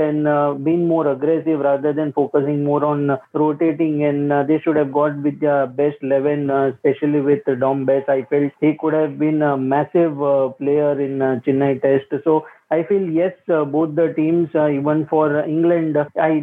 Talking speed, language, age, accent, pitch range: 205 wpm, English, 20-39, Indian, 140-155 Hz